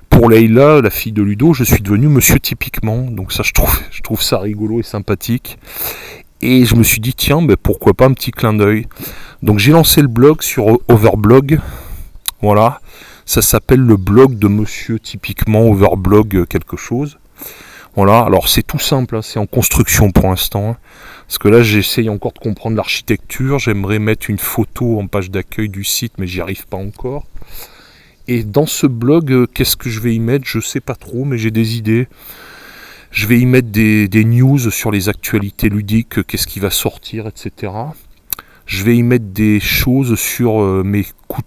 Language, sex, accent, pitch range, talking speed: French, male, French, 105-125 Hz, 190 wpm